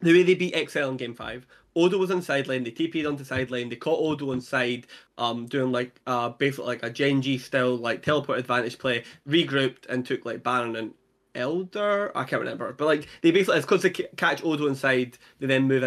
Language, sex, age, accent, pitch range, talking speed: English, male, 20-39, British, 135-215 Hz, 220 wpm